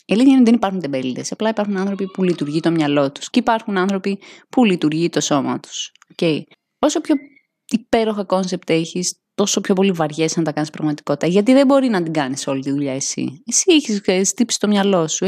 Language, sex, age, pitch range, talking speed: Greek, female, 20-39, 165-215 Hz, 210 wpm